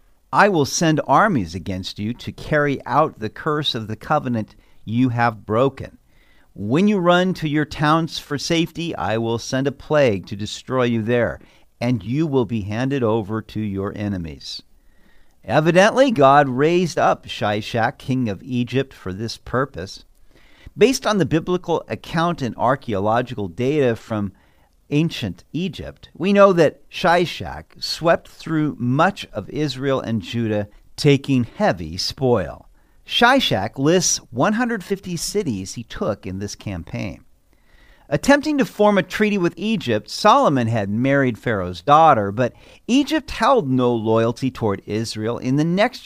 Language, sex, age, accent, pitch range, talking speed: English, male, 50-69, American, 110-165 Hz, 145 wpm